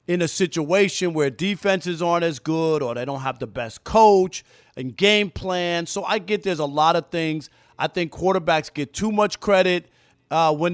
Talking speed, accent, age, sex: 195 wpm, American, 40-59, male